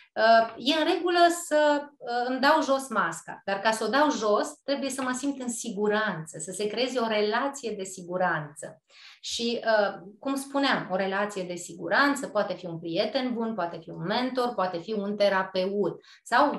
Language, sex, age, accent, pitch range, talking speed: Romanian, female, 20-39, native, 195-270 Hz, 175 wpm